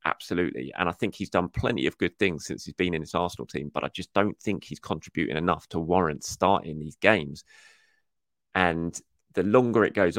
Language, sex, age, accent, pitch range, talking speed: English, male, 30-49, British, 90-110 Hz, 205 wpm